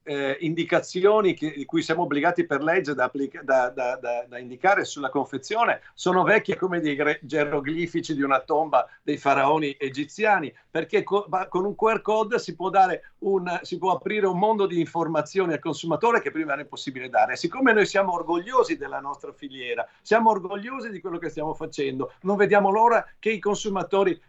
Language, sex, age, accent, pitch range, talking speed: Italian, male, 50-69, native, 150-205 Hz, 160 wpm